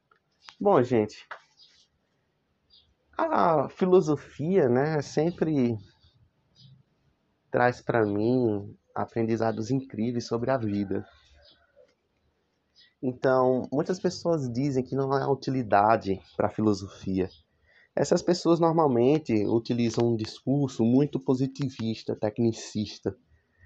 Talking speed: 85 wpm